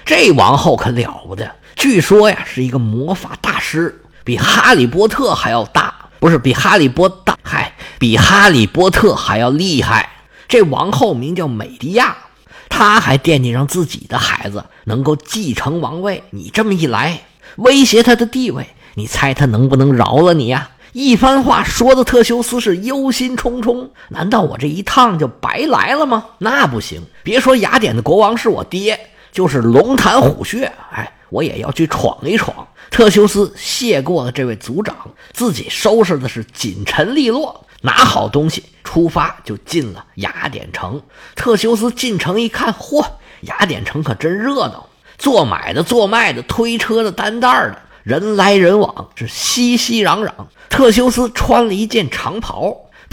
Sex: male